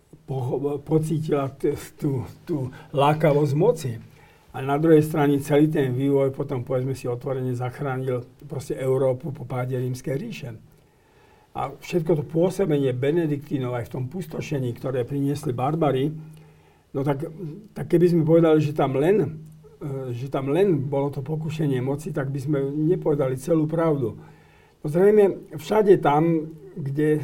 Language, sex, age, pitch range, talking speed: Slovak, male, 50-69, 140-165 Hz, 135 wpm